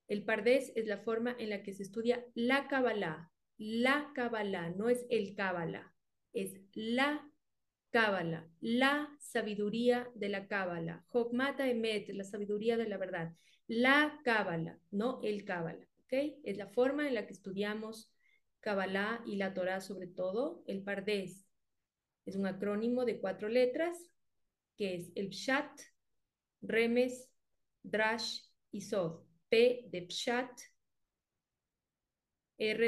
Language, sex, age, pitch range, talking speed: Spanish, female, 30-49, 195-245 Hz, 130 wpm